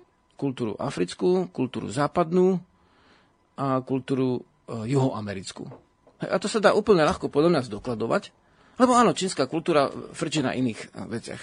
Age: 40-59